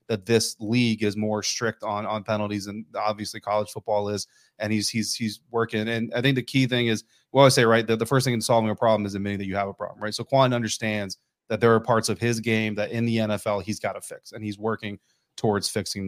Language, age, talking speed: English, 30-49, 260 wpm